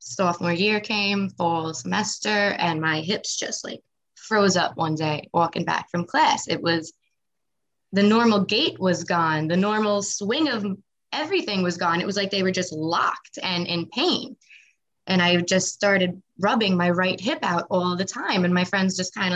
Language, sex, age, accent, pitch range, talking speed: English, female, 20-39, American, 165-205 Hz, 185 wpm